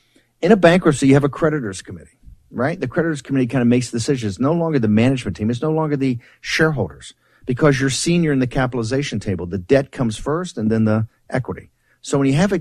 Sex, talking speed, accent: male, 225 wpm, American